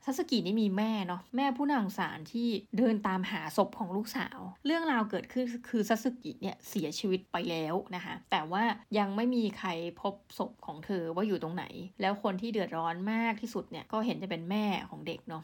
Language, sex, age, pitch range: Thai, female, 20-39, 185-235 Hz